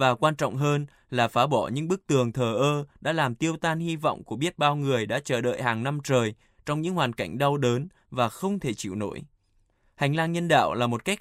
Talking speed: 245 wpm